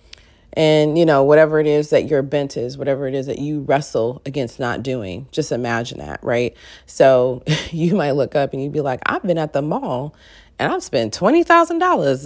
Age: 30-49